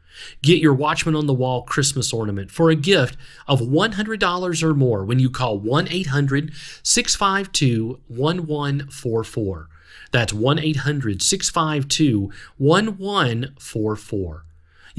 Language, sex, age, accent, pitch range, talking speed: English, male, 40-59, American, 120-175 Hz, 85 wpm